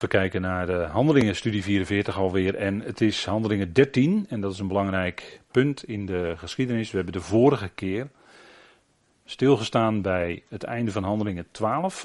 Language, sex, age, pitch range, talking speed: Dutch, male, 40-59, 95-115 Hz, 170 wpm